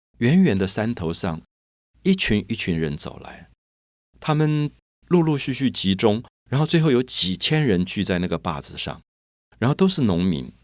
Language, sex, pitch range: Chinese, male, 90-130 Hz